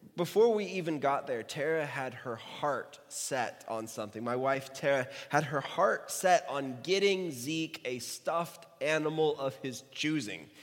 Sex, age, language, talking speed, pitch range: male, 20-39, English, 160 wpm, 125-185 Hz